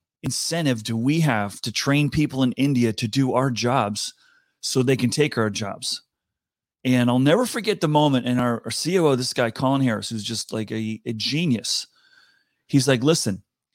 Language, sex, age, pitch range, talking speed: English, male, 30-49, 120-150 Hz, 185 wpm